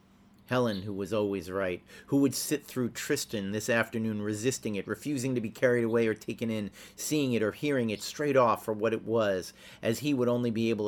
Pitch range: 100-120 Hz